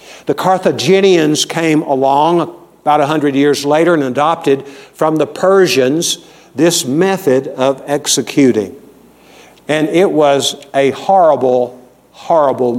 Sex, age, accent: male, 60-79, American